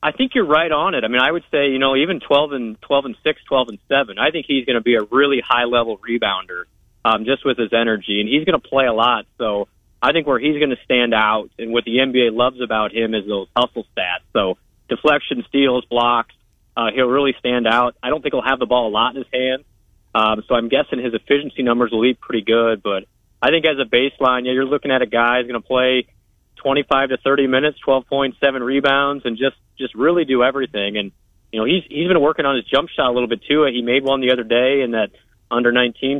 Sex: male